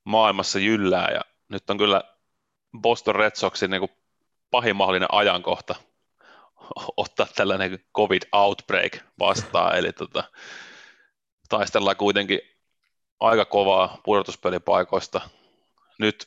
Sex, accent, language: male, native, Finnish